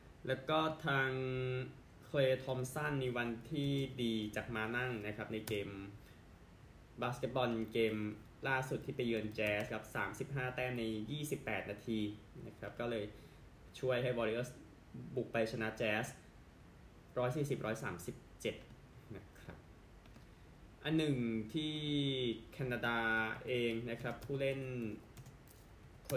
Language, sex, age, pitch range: Thai, male, 20-39, 110-130 Hz